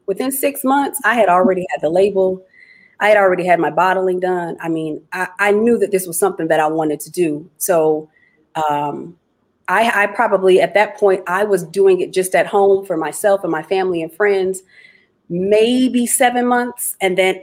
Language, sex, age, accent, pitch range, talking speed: English, female, 30-49, American, 170-225 Hz, 195 wpm